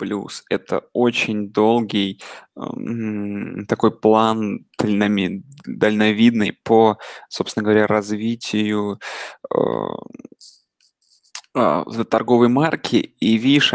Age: 20-39